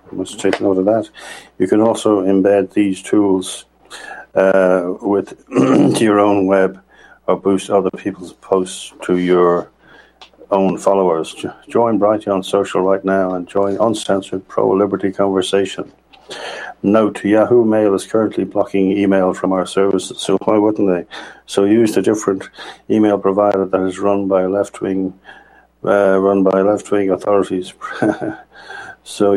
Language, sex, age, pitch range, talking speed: English, male, 50-69, 95-105 Hz, 135 wpm